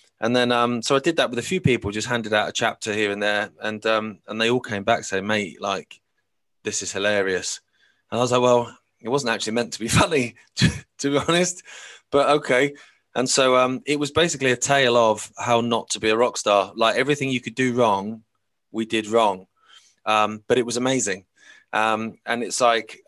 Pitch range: 105-120 Hz